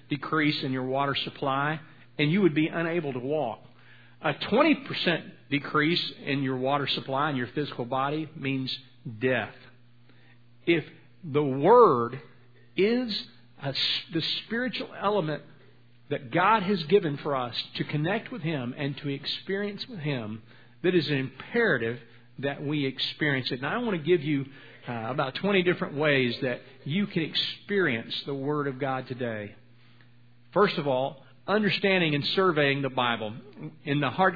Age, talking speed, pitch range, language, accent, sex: 50-69, 150 wpm, 130-180 Hz, English, American, male